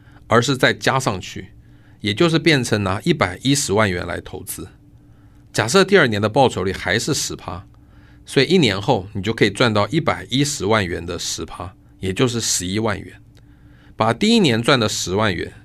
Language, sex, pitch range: Chinese, male, 95-130 Hz